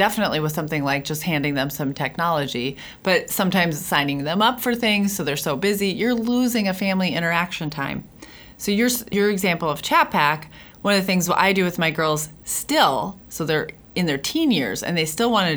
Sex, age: female, 30-49